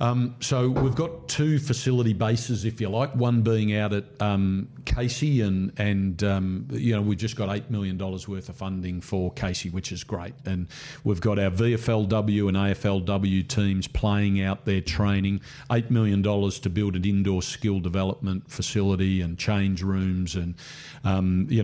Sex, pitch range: male, 95-115 Hz